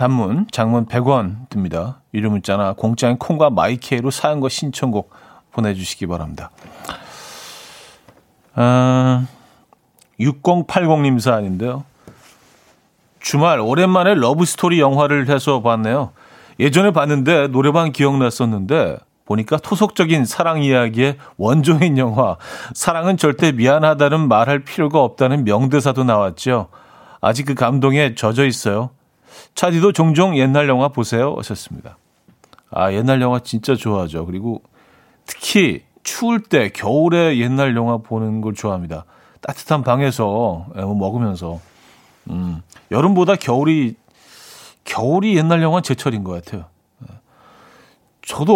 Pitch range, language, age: 115-150 Hz, Korean, 40-59